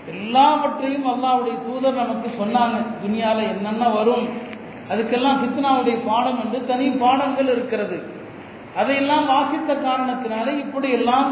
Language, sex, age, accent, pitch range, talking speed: Tamil, male, 40-59, native, 220-265 Hz, 105 wpm